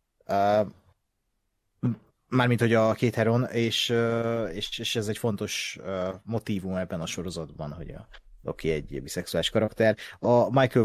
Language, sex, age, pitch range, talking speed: Hungarian, male, 30-49, 95-115 Hz, 145 wpm